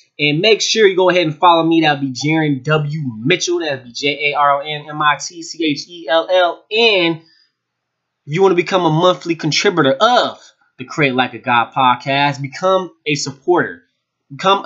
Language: English